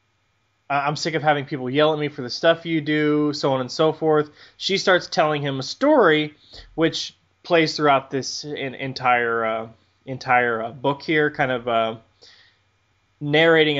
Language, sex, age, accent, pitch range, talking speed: English, male, 20-39, American, 125-150 Hz, 165 wpm